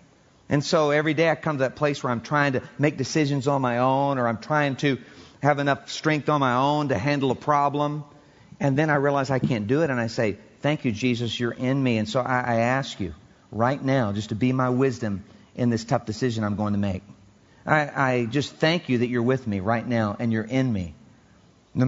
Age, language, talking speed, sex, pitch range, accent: 40-59, English, 235 wpm, male, 120-150 Hz, American